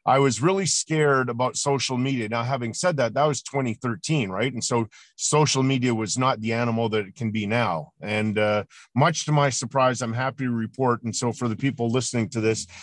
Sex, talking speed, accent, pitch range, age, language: male, 215 wpm, American, 120-150 Hz, 40-59, English